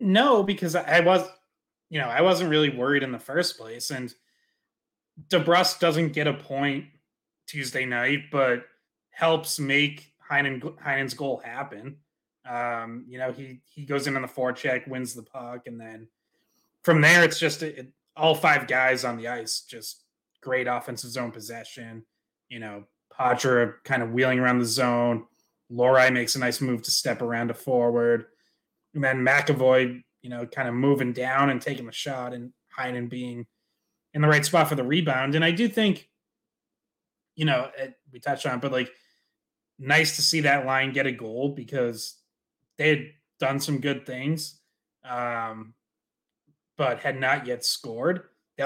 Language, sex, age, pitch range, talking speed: English, male, 20-39, 120-150 Hz, 170 wpm